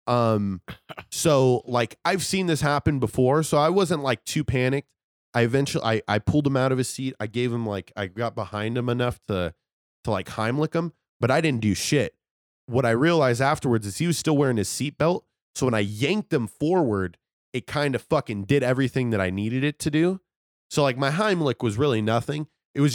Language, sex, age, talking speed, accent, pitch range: English, male, 20-39, 210 wpm, American, 110-150 Hz